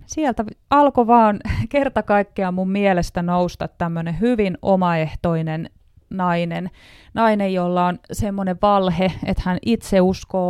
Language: Finnish